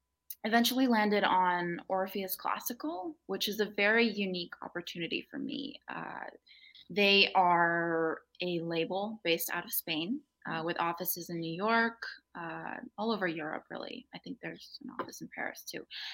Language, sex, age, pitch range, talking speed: English, female, 20-39, 165-225 Hz, 155 wpm